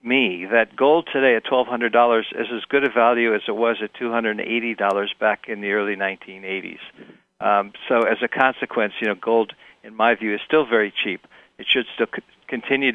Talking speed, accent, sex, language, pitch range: 185 wpm, American, male, English, 110-125 Hz